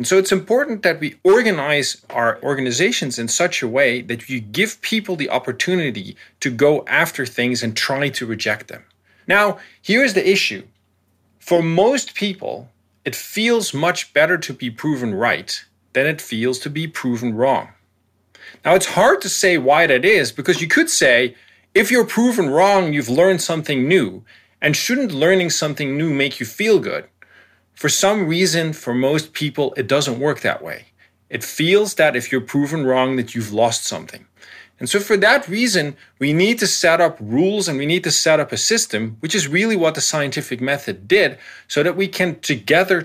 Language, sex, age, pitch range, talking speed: English, male, 40-59, 125-190 Hz, 185 wpm